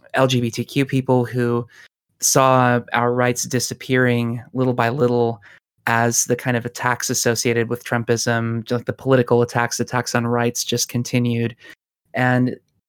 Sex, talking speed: male, 130 wpm